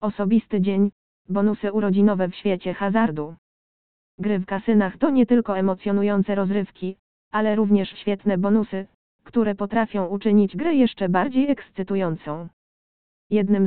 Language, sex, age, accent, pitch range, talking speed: Polish, female, 20-39, native, 195-215 Hz, 120 wpm